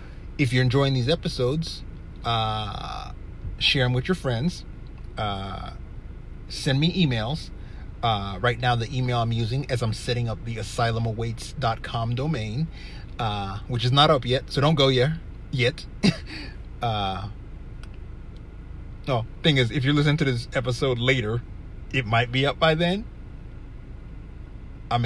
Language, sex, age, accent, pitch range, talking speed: English, male, 30-49, American, 105-130 Hz, 140 wpm